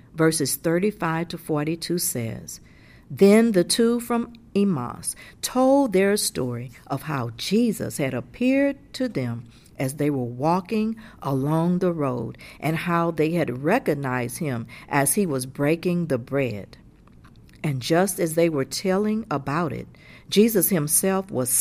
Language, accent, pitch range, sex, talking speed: English, American, 135-200 Hz, female, 140 wpm